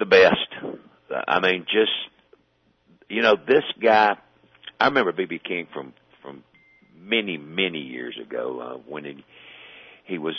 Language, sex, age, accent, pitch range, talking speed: English, male, 50-69, American, 75-105 Hz, 145 wpm